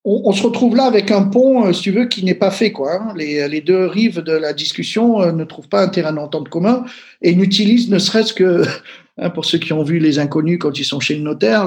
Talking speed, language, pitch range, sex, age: 235 wpm, French, 150-205 Hz, male, 50-69